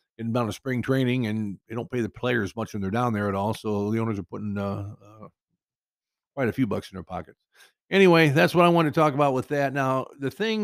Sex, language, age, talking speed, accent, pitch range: male, English, 50-69, 250 wpm, American, 110-150 Hz